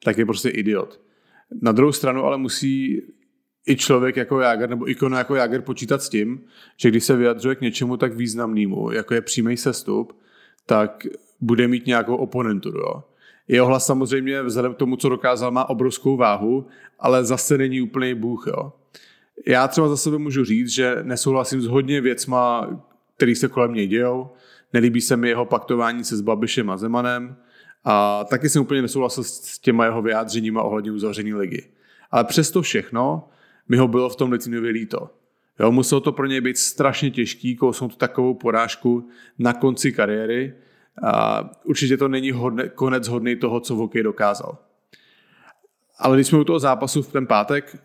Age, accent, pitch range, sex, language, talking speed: 30-49, Czech, 115-130 Hz, male, English, 170 wpm